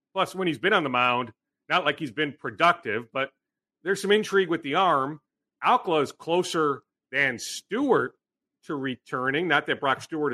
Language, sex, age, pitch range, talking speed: English, male, 40-59, 140-180 Hz, 175 wpm